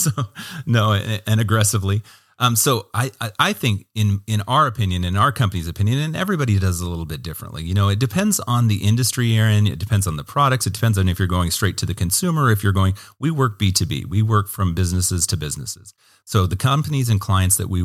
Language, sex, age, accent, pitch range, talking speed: English, male, 40-59, American, 90-115 Hz, 220 wpm